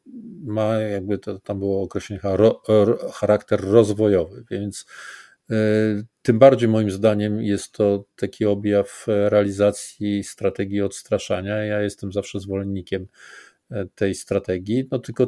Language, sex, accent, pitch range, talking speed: Polish, male, native, 100-120 Hz, 110 wpm